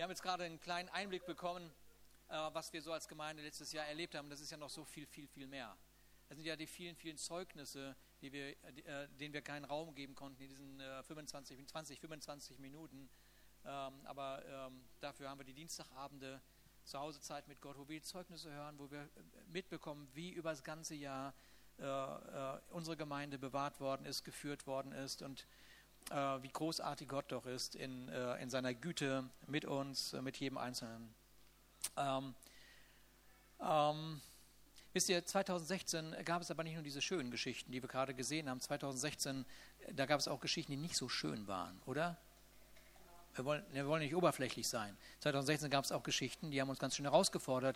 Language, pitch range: German, 135-165 Hz